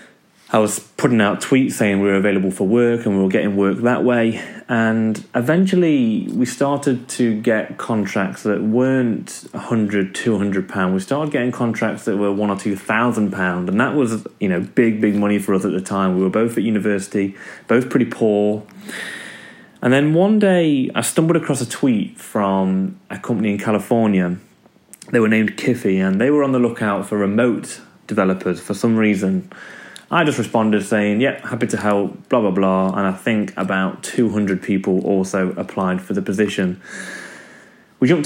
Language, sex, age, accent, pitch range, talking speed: English, male, 30-49, British, 100-125 Hz, 180 wpm